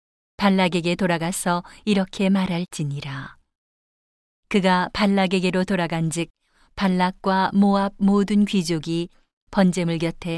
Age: 40-59